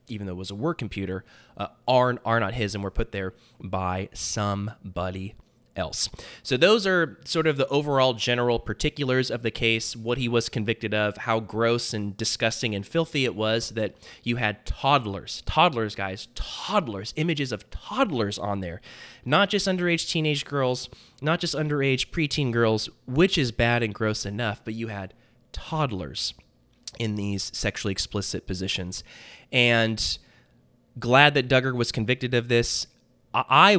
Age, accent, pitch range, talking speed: 20-39, American, 105-125 Hz, 160 wpm